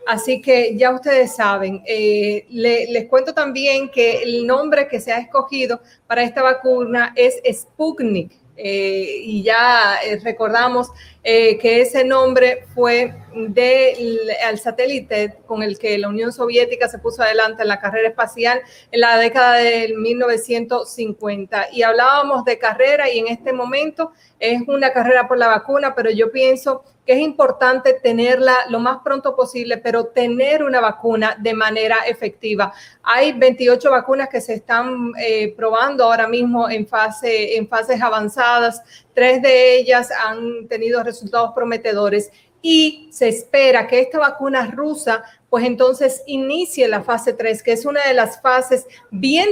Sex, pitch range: female, 225-260 Hz